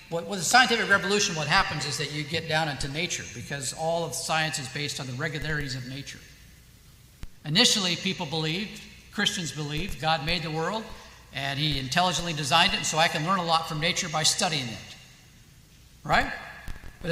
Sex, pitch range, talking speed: male, 130-170 Hz, 180 wpm